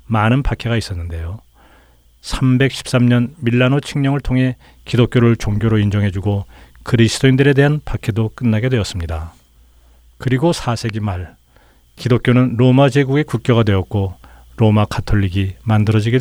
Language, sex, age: Korean, male, 40-59